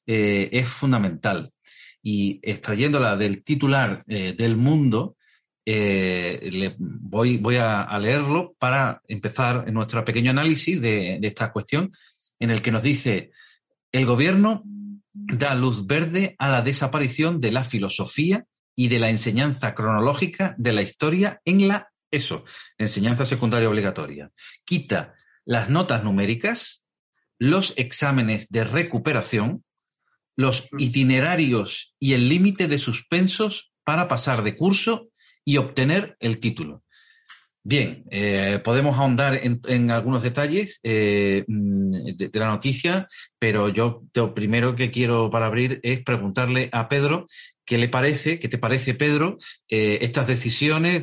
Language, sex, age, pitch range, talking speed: Spanish, male, 40-59, 110-145 Hz, 135 wpm